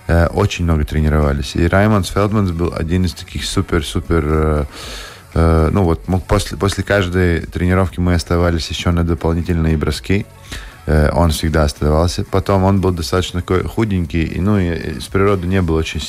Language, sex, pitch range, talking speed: Russian, male, 85-100 Hz, 155 wpm